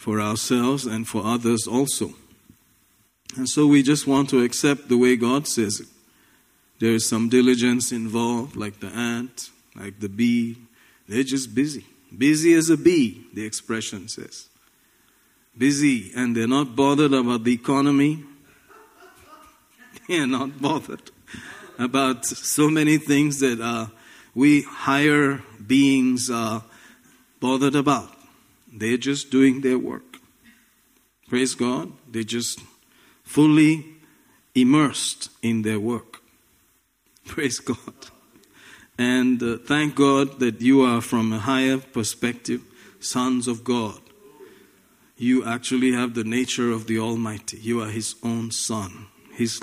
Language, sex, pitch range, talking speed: English, male, 115-140 Hz, 130 wpm